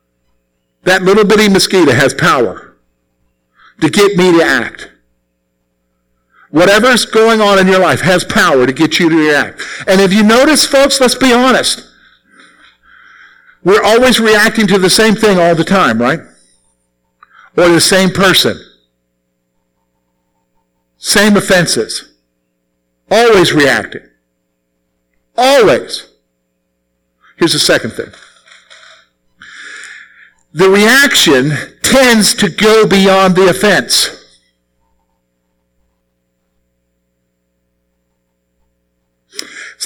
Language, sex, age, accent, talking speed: English, male, 50-69, American, 100 wpm